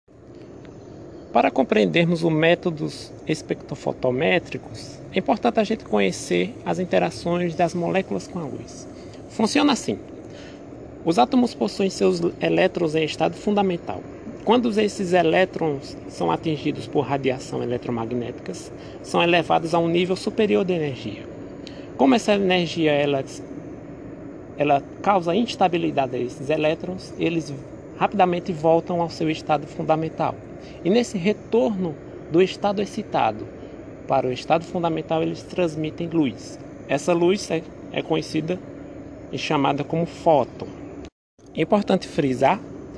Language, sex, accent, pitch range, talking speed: Portuguese, male, Brazilian, 145-185 Hz, 115 wpm